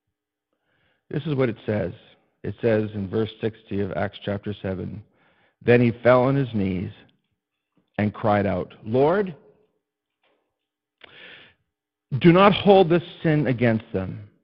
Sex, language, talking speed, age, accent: male, English, 130 wpm, 60-79, American